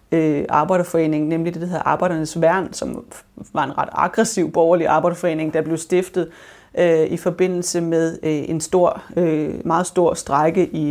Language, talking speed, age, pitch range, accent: Danish, 170 wpm, 30-49, 160-180 Hz, native